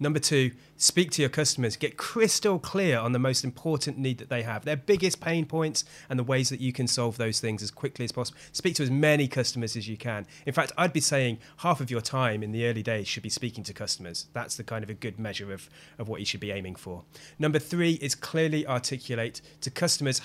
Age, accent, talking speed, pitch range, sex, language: 30-49, British, 245 wpm, 115-155 Hz, male, English